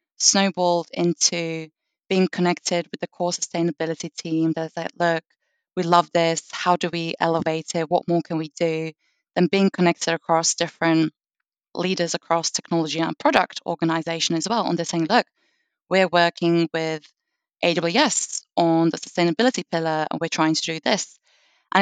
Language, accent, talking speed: English, British, 155 wpm